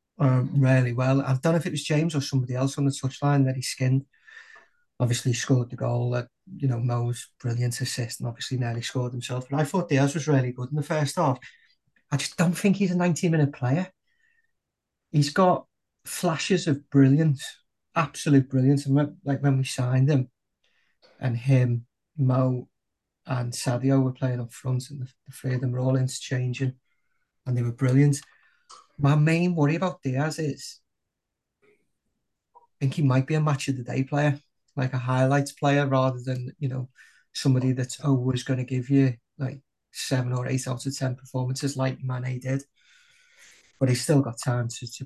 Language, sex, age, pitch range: English, male, 30-49, 125-145 Hz